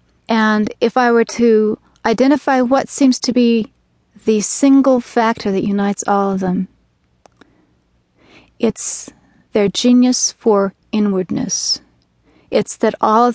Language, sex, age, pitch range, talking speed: English, female, 40-59, 190-240 Hz, 120 wpm